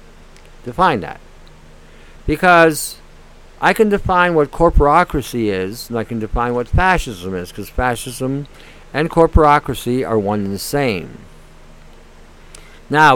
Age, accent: 60-79, American